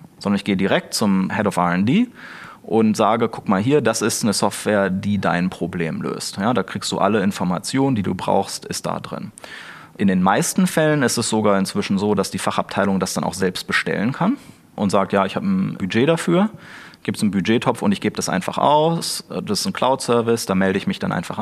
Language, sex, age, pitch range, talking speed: German, male, 30-49, 100-135 Hz, 220 wpm